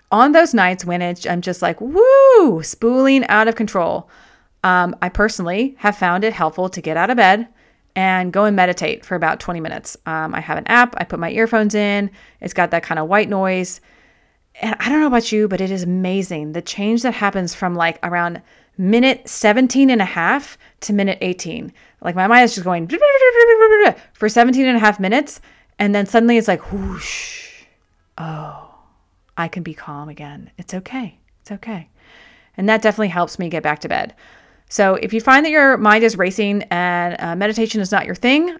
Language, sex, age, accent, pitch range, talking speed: English, female, 30-49, American, 180-235 Hz, 195 wpm